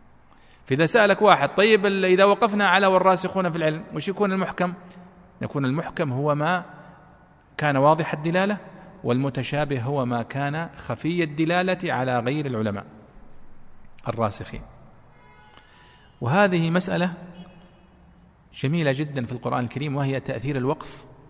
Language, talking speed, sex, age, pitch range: Arabic, 115 wpm, male, 40-59, 115-165 Hz